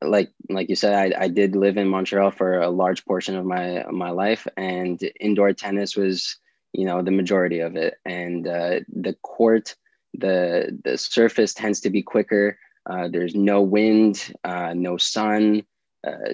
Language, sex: English, male